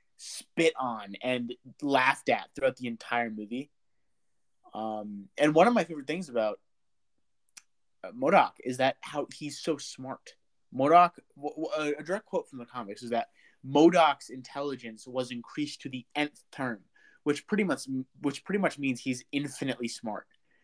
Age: 30-49